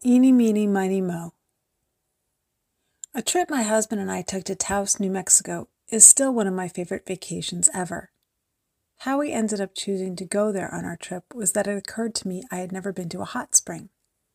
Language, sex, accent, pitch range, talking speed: English, female, American, 180-220 Hz, 200 wpm